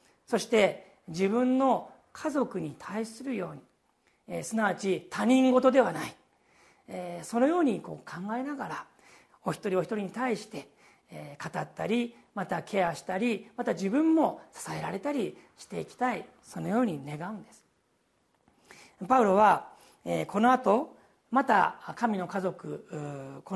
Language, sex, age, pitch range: Japanese, male, 40-59, 180-250 Hz